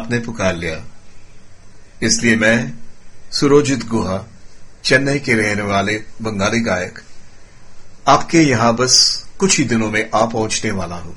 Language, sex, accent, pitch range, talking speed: Gujarati, male, native, 110-130 Hz, 130 wpm